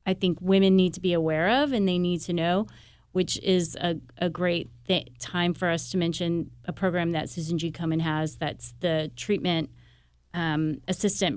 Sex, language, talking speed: female, English, 190 wpm